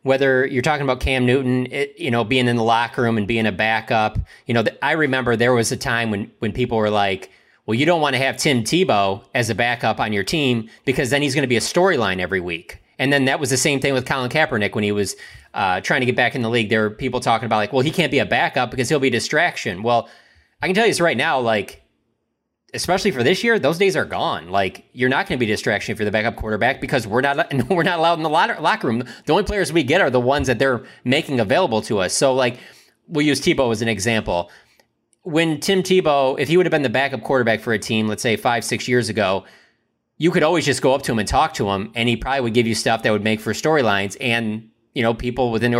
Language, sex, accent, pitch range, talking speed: English, male, American, 110-140 Hz, 270 wpm